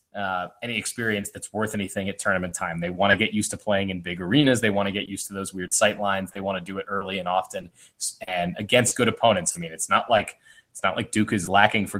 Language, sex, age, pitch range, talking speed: English, male, 20-39, 95-110 Hz, 265 wpm